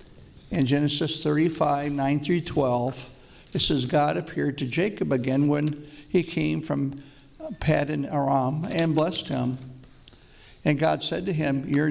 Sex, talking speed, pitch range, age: male, 140 wpm, 130-155 Hz, 50-69